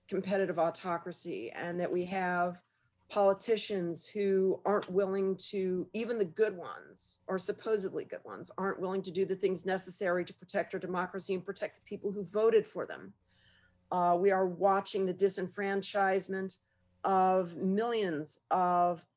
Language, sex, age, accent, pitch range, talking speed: English, female, 40-59, American, 175-200 Hz, 145 wpm